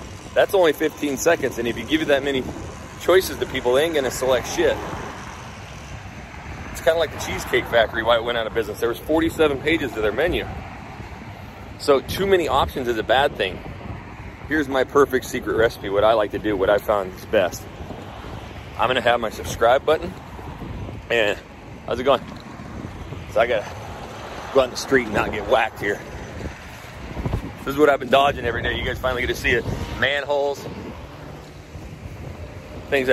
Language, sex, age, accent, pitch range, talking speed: English, male, 30-49, American, 105-145 Hz, 190 wpm